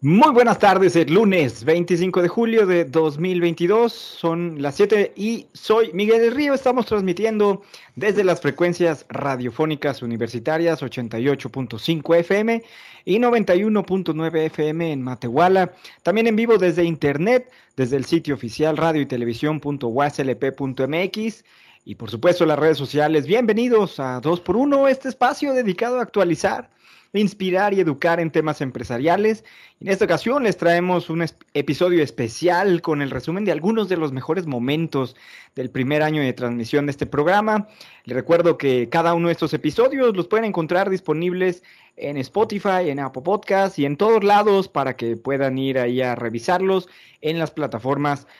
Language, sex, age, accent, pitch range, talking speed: Spanish, male, 40-59, Mexican, 140-200 Hz, 150 wpm